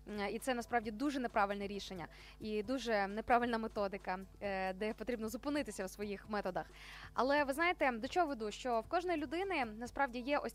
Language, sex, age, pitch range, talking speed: Ukrainian, female, 20-39, 225-280 Hz, 165 wpm